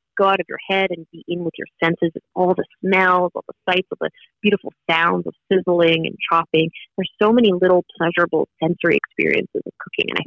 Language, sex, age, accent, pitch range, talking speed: English, female, 30-49, American, 170-220 Hz, 215 wpm